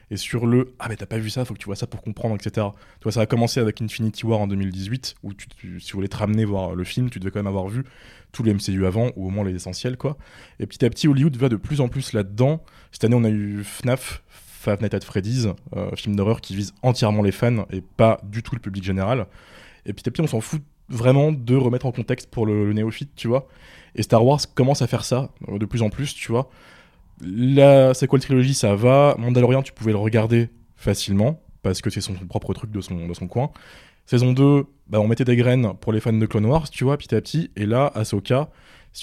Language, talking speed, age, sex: French, 260 wpm, 20-39, male